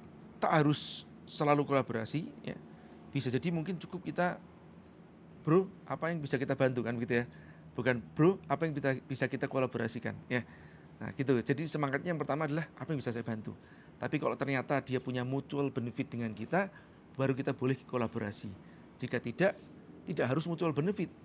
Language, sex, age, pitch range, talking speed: Indonesian, male, 30-49, 120-155 Hz, 160 wpm